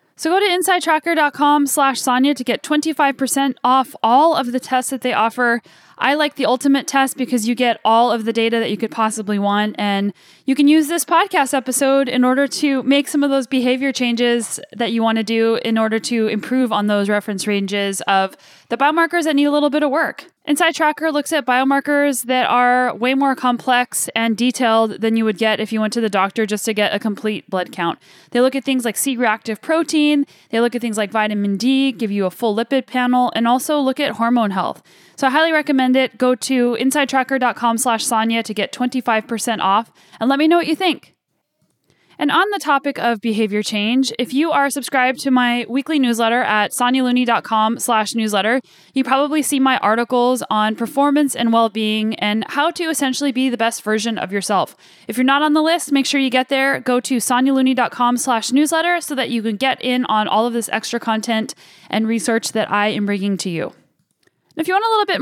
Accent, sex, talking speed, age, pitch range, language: American, female, 210 wpm, 10-29, 225-275 Hz, English